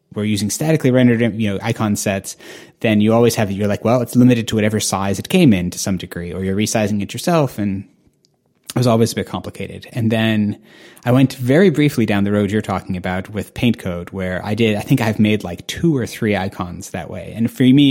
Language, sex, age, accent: English, male, 30-49, American